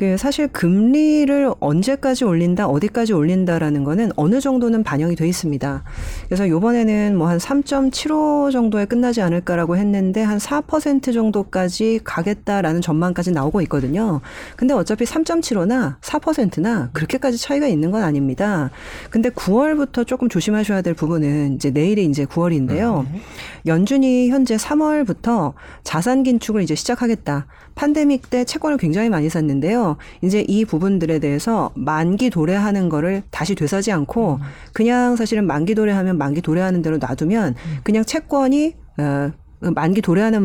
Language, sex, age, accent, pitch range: Korean, female, 40-59, native, 160-250 Hz